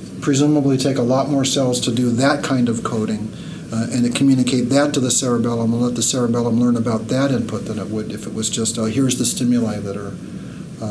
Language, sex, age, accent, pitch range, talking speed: English, male, 40-59, American, 120-150 Hz, 230 wpm